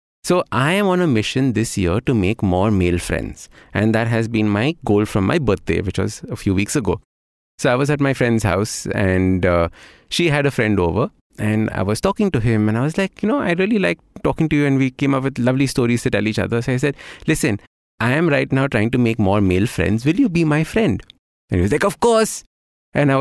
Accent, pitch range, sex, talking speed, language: Indian, 100-140 Hz, male, 255 wpm, English